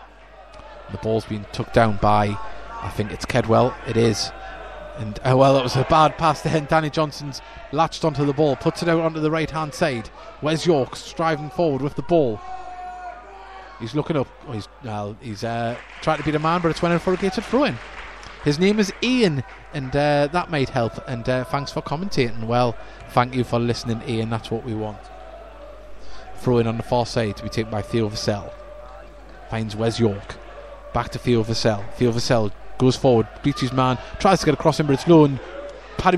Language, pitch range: English, 120-155 Hz